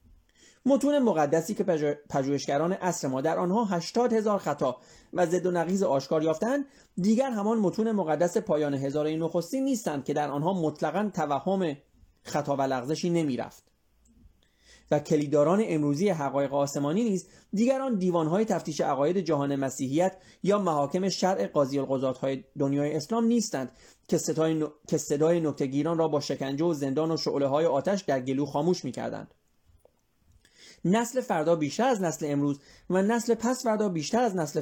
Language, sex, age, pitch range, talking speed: Persian, male, 30-49, 145-205 Hz, 145 wpm